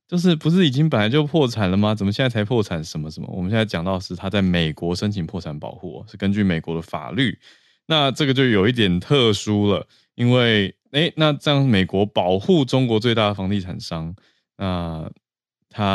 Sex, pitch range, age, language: male, 90-120 Hz, 20-39, Chinese